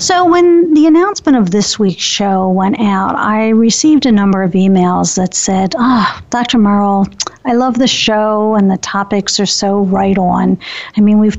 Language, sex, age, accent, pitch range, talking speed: English, female, 50-69, American, 200-255 Hz, 190 wpm